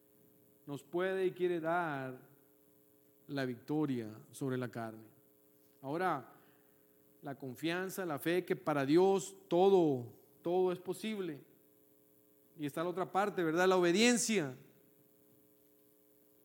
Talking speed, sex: 110 wpm, male